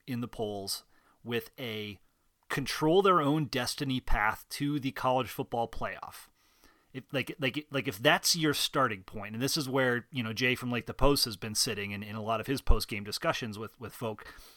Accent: American